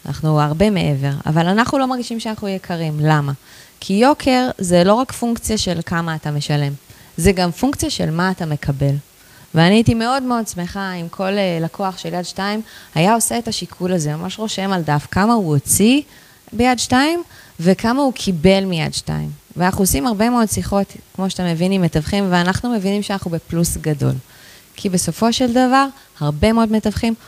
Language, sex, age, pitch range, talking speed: Hebrew, female, 20-39, 165-220 Hz, 170 wpm